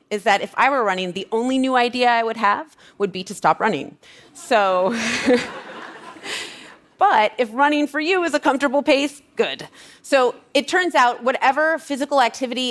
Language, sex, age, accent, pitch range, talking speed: English, female, 30-49, American, 185-255 Hz, 170 wpm